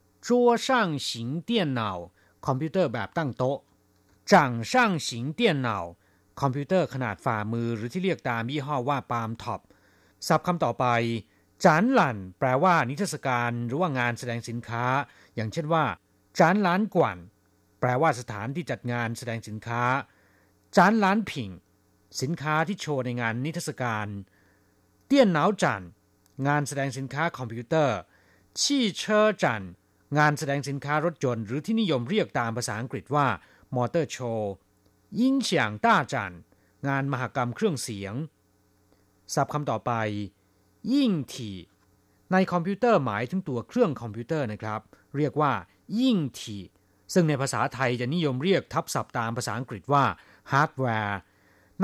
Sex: male